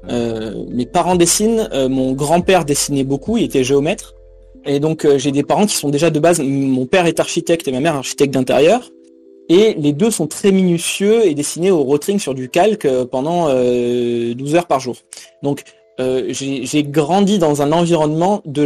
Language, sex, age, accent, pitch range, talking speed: French, male, 20-39, French, 130-165 Hz, 190 wpm